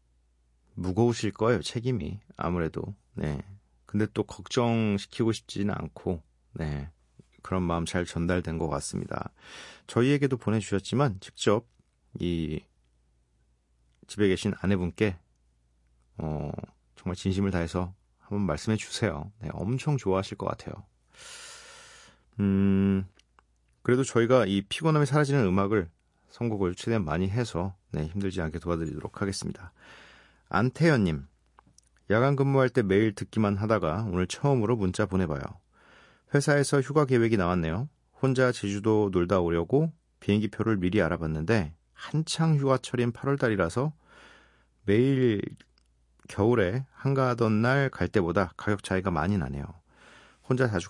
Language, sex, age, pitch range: Korean, male, 40-59, 85-125 Hz